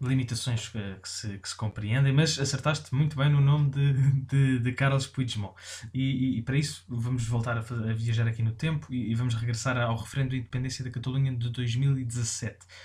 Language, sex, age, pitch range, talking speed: Portuguese, male, 20-39, 115-135 Hz, 200 wpm